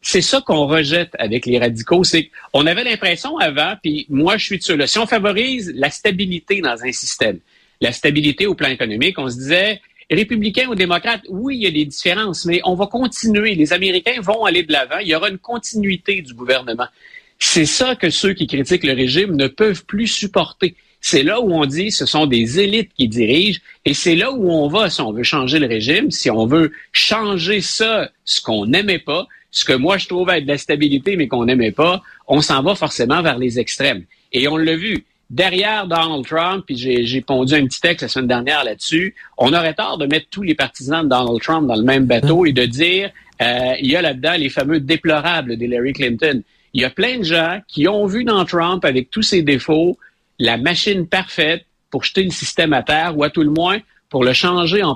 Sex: male